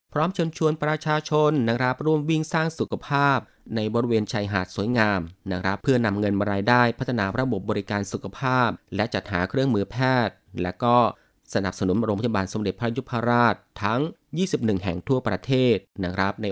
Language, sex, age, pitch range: Thai, male, 30-49, 100-130 Hz